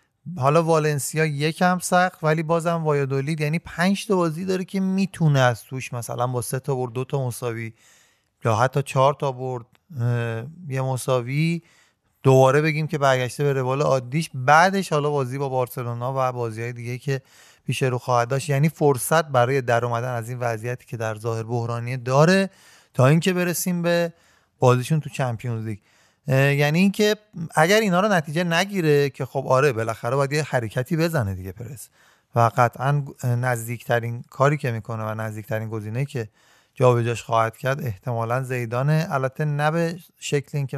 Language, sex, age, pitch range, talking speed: Persian, male, 30-49, 125-155 Hz, 155 wpm